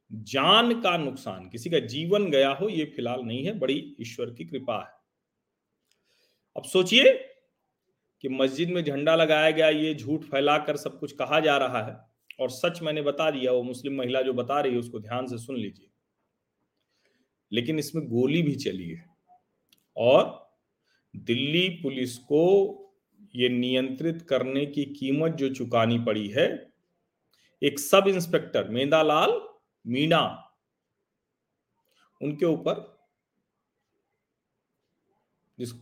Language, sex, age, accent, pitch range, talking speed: Hindi, male, 40-59, native, 125-160 Hz, 130 wpm